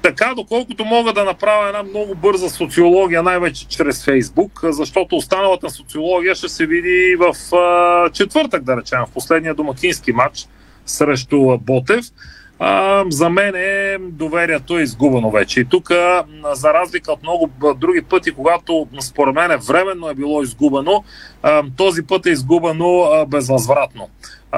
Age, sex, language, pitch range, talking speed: 40-59, male, Bulgarian, 145-180 Hz, 135 wpm